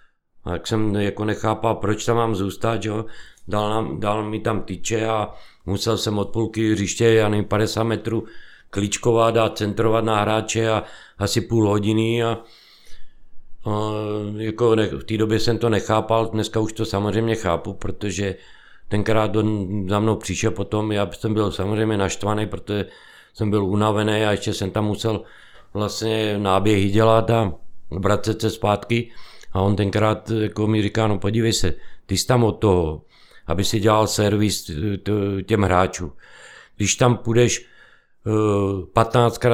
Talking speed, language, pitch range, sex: 155 wpm, Czech, 105-115 Hz, male